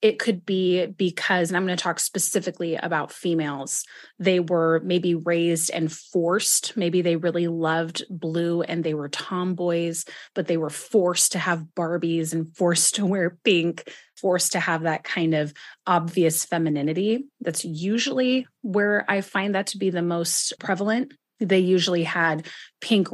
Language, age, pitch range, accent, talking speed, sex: English, 20-39, 165-195 Hz, American, 160 wpm, female